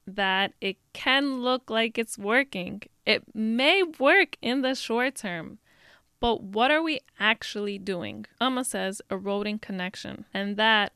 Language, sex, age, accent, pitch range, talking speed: English, female, 20-39, American, 190-230 Hz, 140 wpm